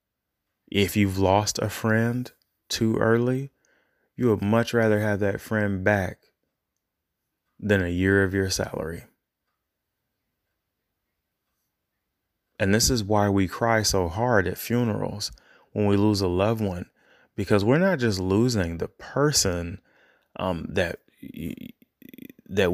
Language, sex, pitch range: English, male, 90-105 Hz